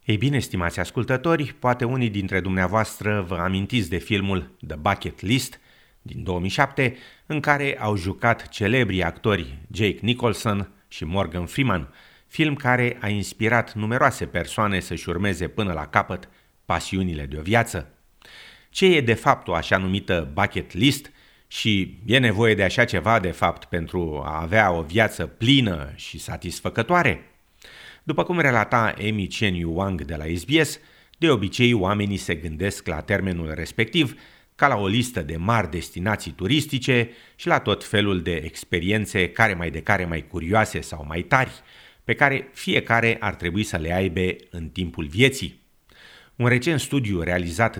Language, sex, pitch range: Romanian, male, 90-120 Hz